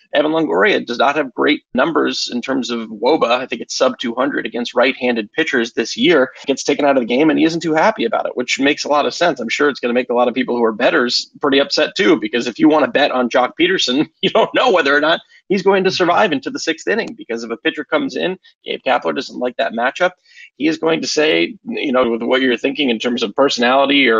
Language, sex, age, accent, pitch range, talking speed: English, male, 30-49, American, 130-190 Hz, 265 wpm